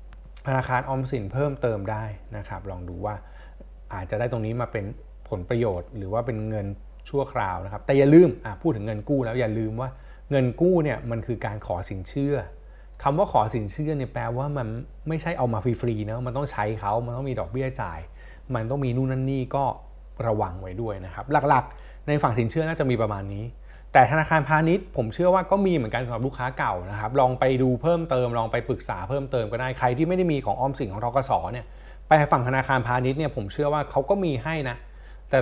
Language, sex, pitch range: Thai, male, 110-145 Hz